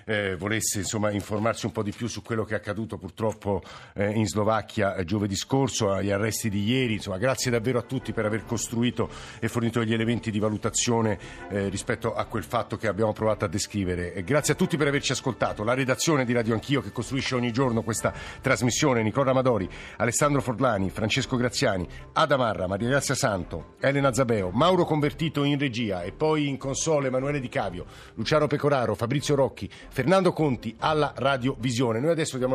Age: 50-69